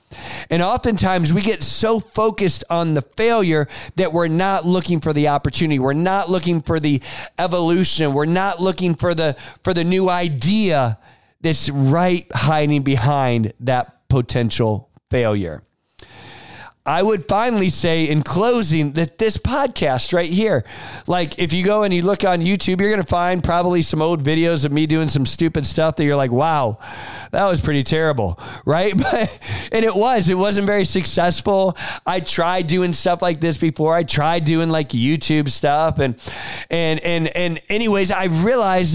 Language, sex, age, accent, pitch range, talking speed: English, male, 40-59, American, 145-195 Hz, 170 wpm